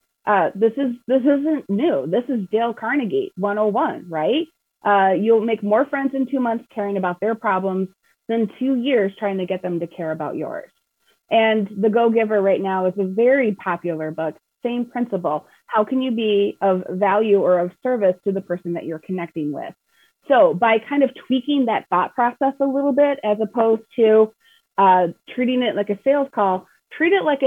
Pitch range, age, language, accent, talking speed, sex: 195-260 Hz, 30-49, English, American, 190 wpm, female